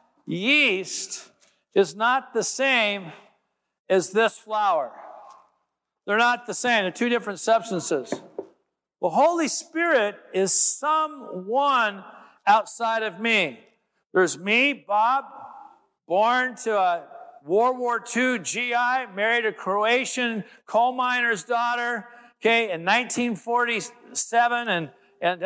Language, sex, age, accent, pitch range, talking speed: English, male, 50-69, American, 205-255 Hz, 105 wpm